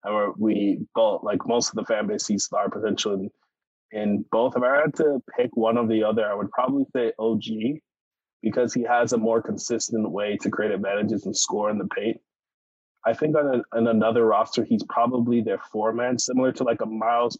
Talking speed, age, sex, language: 200 wpm, 20-39, male, English